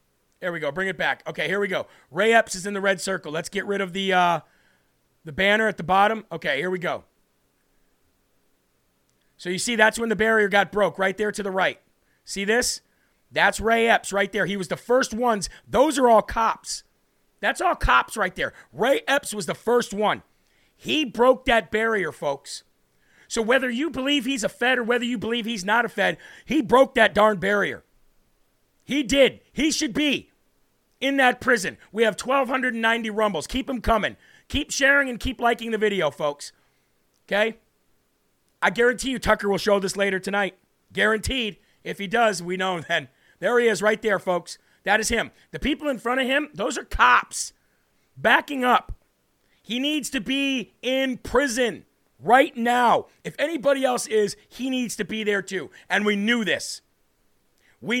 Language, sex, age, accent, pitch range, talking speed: English, male, 40-59, American, 195-250 Hz, 185 wpm